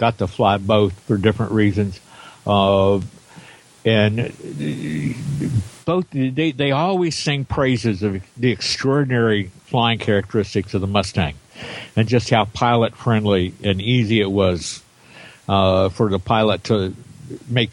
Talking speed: 125 wpm